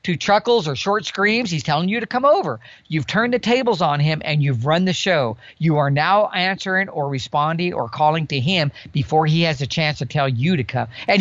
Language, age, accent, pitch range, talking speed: English, 50-69, American, 135-185 Hz, 230 wpm